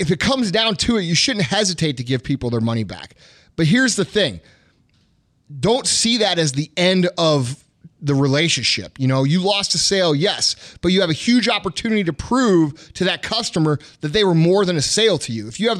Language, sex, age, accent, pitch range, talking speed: English, male, 30-49, American, 145-205 Hz, 220 wpm